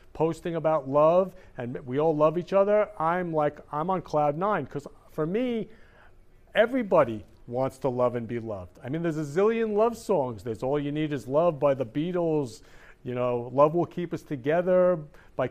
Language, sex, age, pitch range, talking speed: English, male, 50-69, 125-170 Hz, 190 wpm